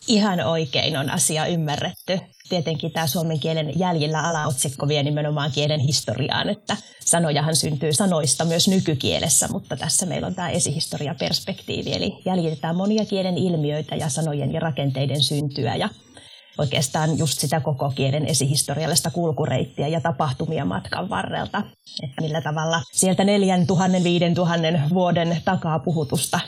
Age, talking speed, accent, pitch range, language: 30-49, 130 wpm, native, 150-180 Hz, Finnish